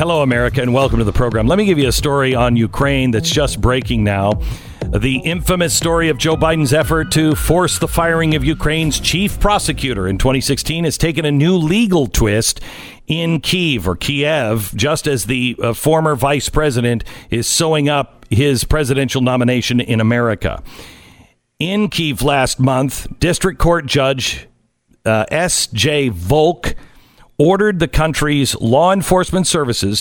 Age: 50-69